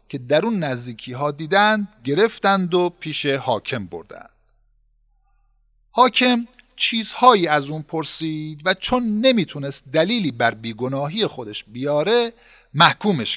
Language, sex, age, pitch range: Persian, male, 50-69, 130-205 Hz